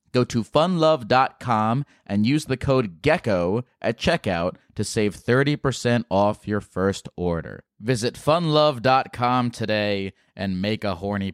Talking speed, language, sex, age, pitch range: 125 wpm, English, male, 30-49, 105-130 Hz